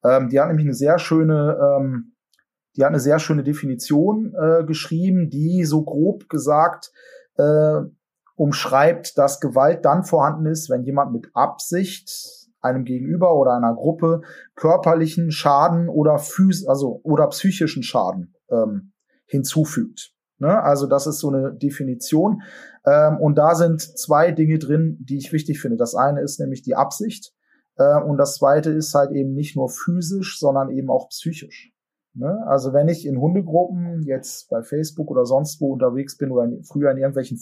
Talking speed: 160 wpm